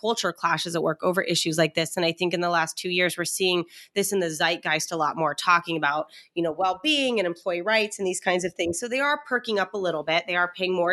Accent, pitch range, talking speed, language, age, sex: American, 170-220 Hz, 275 wpm, English, 30-49, female